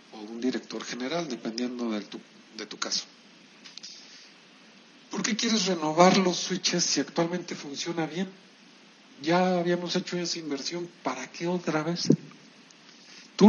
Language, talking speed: Spanish, 125 wpm